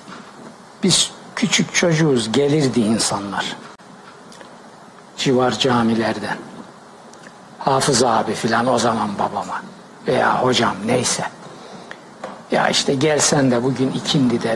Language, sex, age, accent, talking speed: Turkish, male, 60-79, native, 95 wpm